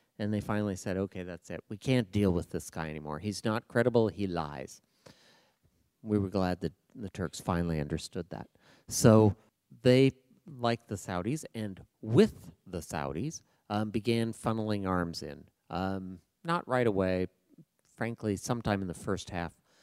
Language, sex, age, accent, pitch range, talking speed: English, male, 40-59, American, 95-130 Hz, 155 wpm